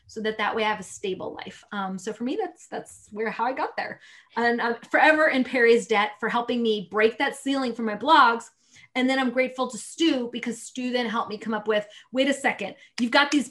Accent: American